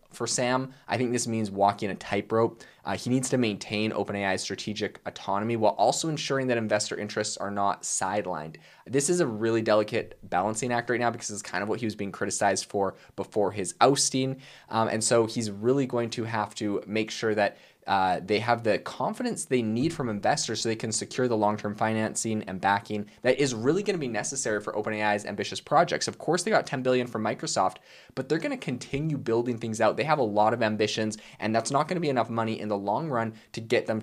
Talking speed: 220 wpm